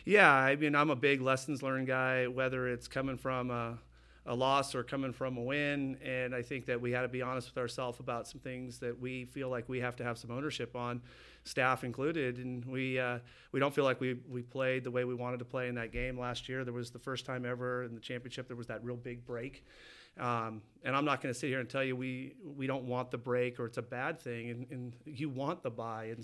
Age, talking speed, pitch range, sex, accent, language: 40-59, 255 wpm, 120-135 Hz, male, American, English